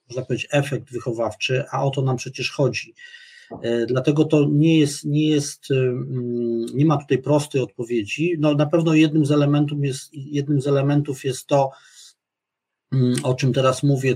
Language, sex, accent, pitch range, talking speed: Polish, male, native, 125-145 Hz, 155 wpm